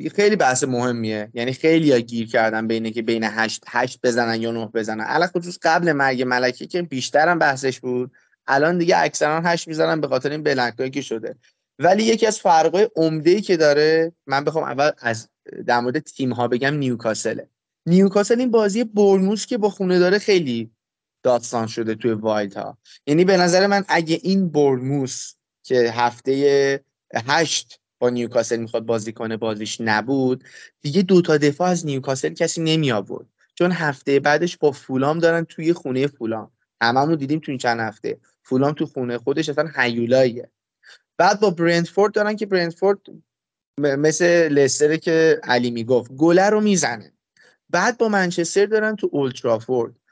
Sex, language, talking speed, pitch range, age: male, Persian, 165 wpm, 120-175 Hz, 20-39